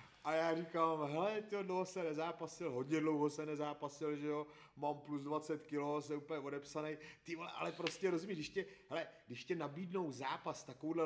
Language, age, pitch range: Czech, 30-49, 130-155 Hz